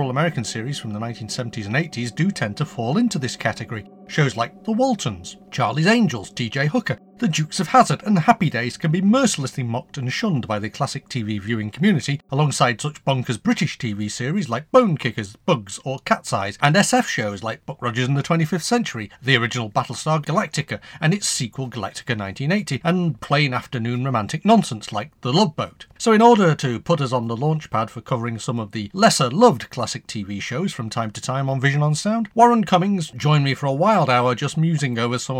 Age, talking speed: 40-59, 205 wpm